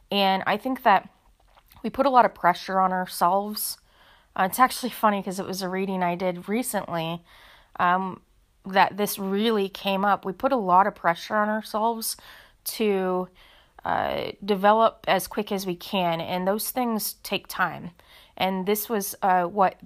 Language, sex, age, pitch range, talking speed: English, female, 20-39, 185-225 Hz, 170 wpm